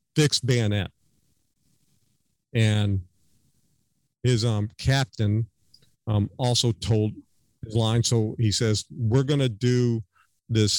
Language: English